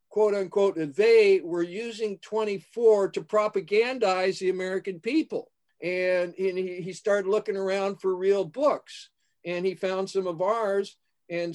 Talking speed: 140 wpm